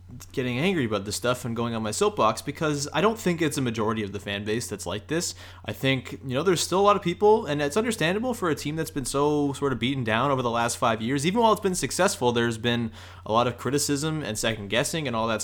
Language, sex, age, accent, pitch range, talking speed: English, male, 20-39, American, 105-145 Hz, 265 wpm